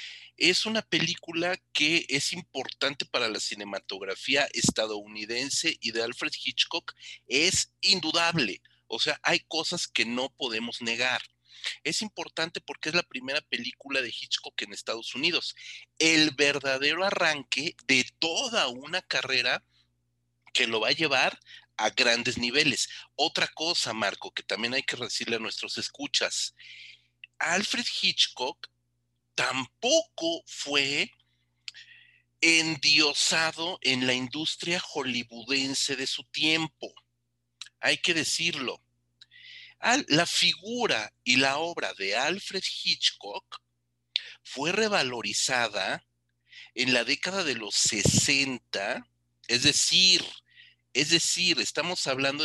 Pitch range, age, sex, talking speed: 115-170 Hz, 40-59, male, 110 wpm